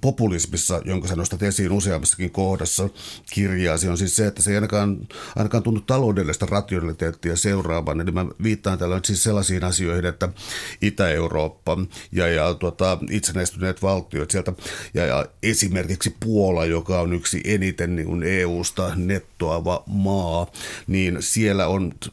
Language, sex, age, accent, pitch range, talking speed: Finnish, male, 60-79, native, 90-100 Hz, 135 wpm